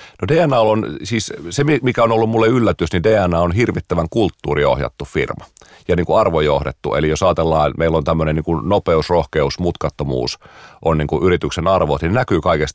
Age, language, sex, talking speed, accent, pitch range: 40-59, Finnish, male, 160 wpm, native, 75-90 Hz